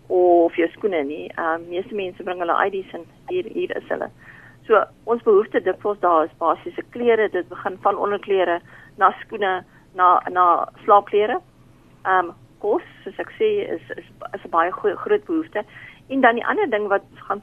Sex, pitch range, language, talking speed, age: female, 175-225 Hz, English, 190 wpm, 40-59